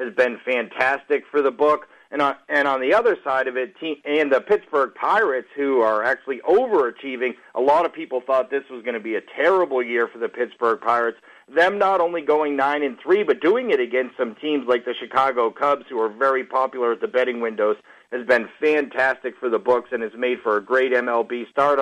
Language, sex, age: English, male, 50-69